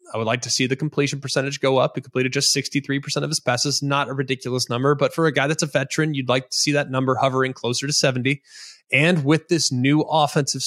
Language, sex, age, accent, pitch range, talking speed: English, male, 20-39, American, 125-150 Hz, 235 wpm